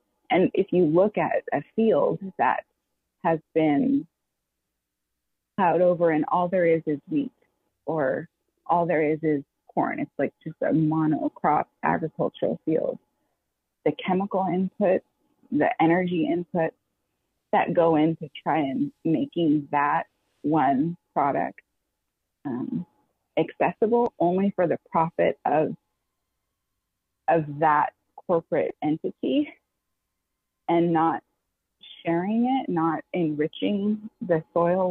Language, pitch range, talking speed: English, 155-200 Hz, 115 wpm